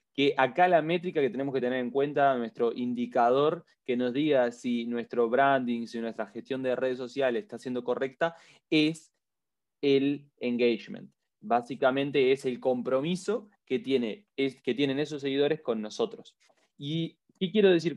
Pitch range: 120-155 Hz